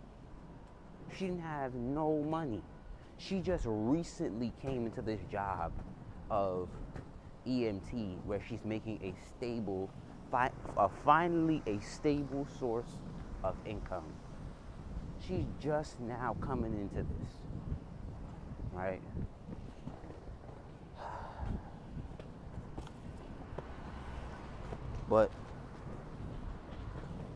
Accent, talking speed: American, 70 wpm